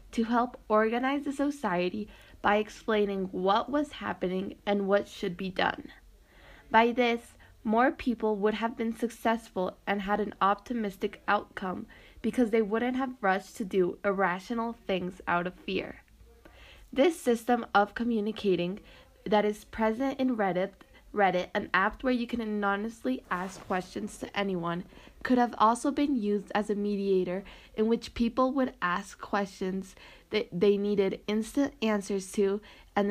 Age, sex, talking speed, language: 20-39, female, 145 wpm, English